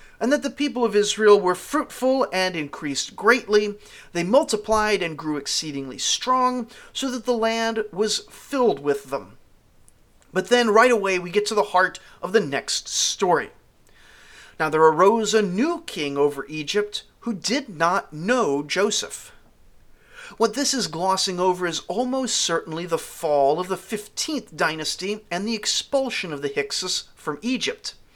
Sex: male